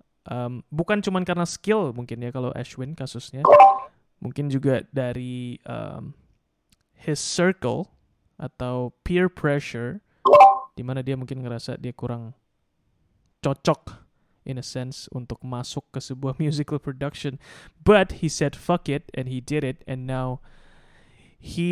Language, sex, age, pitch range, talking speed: English, male, 20-39, 125-160 Hz, 130 wpm